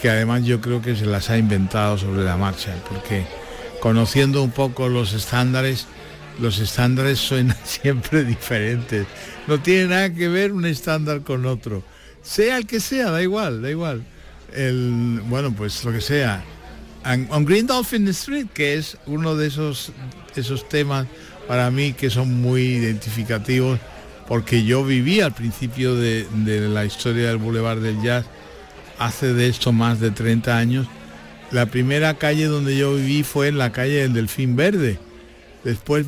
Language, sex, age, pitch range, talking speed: Spanish, male, 60-79, 110-140 Hz, 165 wpm